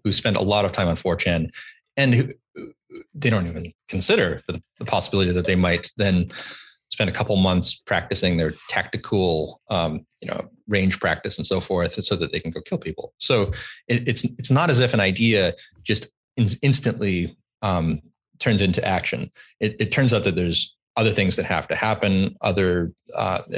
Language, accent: English, American